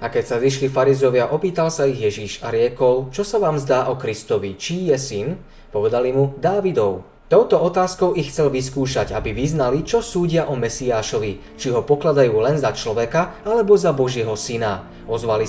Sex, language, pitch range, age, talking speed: male, Slovak, 120-160 Hz, 20-39, 175 wpm